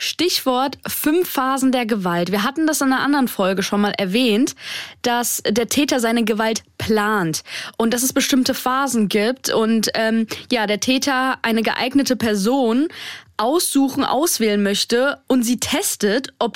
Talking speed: 150 wpm